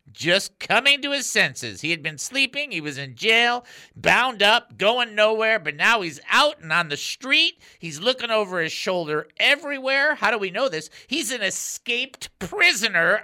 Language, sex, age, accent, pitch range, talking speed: English, male, 50-69, American, 160-235 Hz, 180 wpm